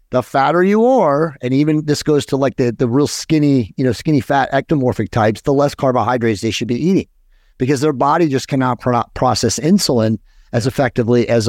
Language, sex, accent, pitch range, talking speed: English, male, American, 120-145 Hz, 200 wpm